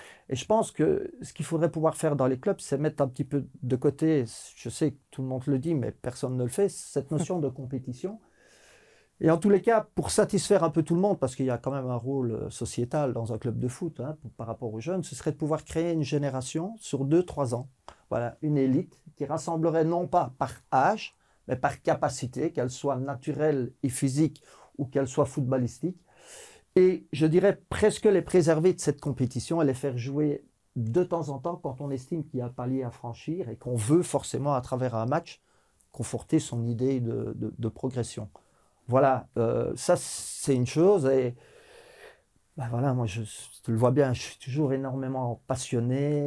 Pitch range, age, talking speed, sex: 125-165 Hz, 40-59, 210 wpm, male